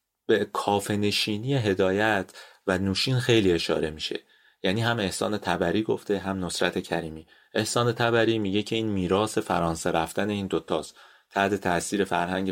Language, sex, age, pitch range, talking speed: Persian, male, 30-49, 90-115 Hz, 145 wpm